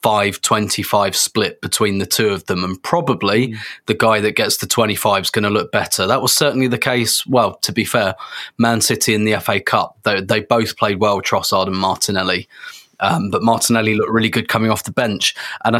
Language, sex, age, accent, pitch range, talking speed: English, male, 20-39, British, 105-120 Hz, 210 wpm